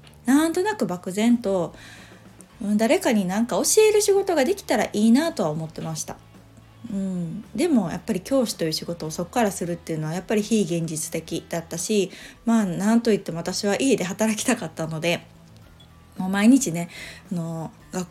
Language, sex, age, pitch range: Japanese, female, 20-39, 165-235 Hz